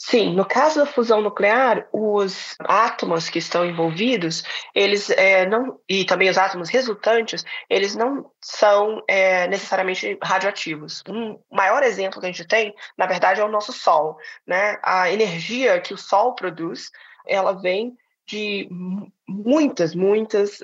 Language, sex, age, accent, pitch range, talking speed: Portuguese, female, 20-39, Brazilian, 165-215 Hz, 135 wpm